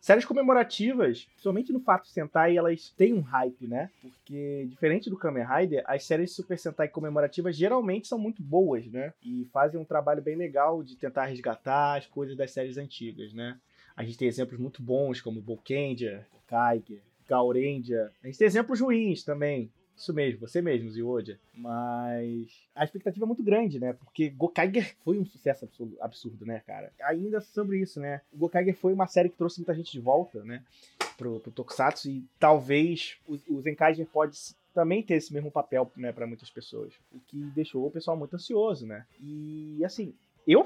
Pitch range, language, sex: 125-175 Hz, Portuguese, male